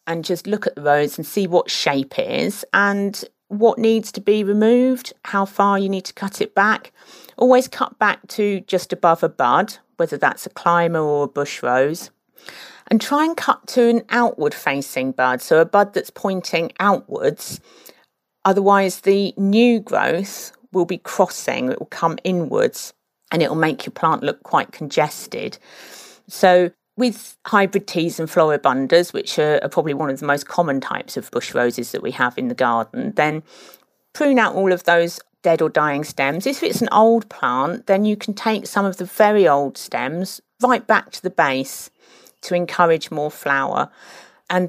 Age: 50-69